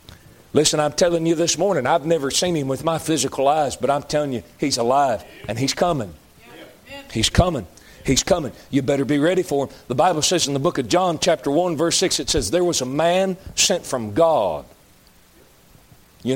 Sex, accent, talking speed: male, American, 200 wpm